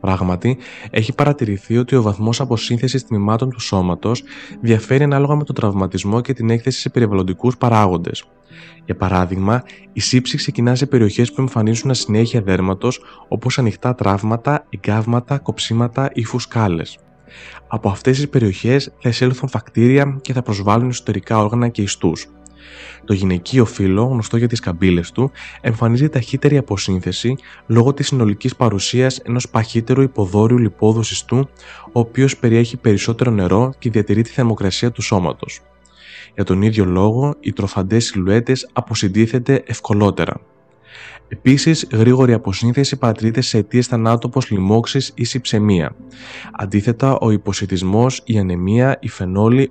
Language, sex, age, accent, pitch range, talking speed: Greek, male, 20-39, native, 100-130 Hz, 130 wpm